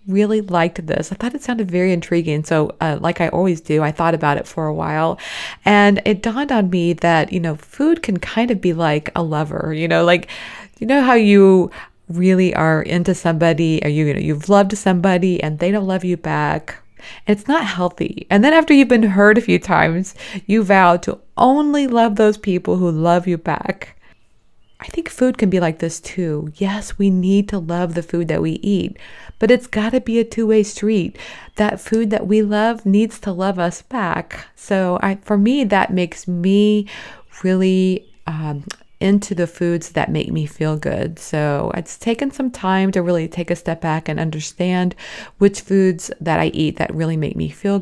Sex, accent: female, American